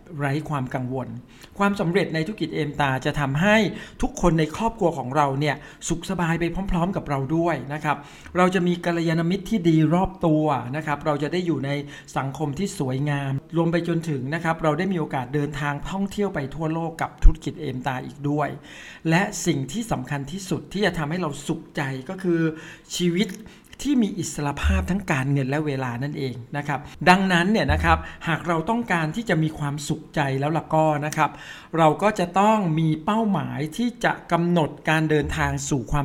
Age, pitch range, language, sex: 60-79, 145-175 Hz, Thai, male